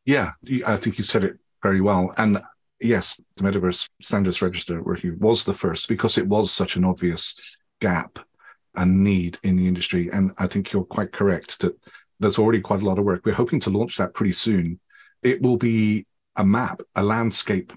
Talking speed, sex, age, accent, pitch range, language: 200 wpm, male, 40-59, British, 90-105 Hz, English